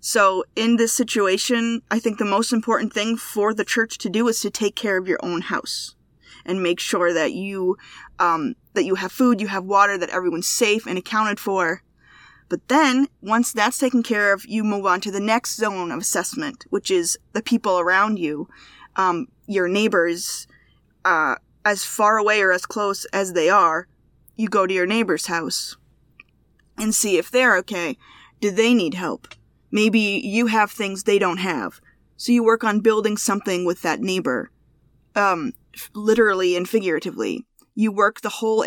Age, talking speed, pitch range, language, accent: 20-39, 180 wpm, 185-230 Hz, English, American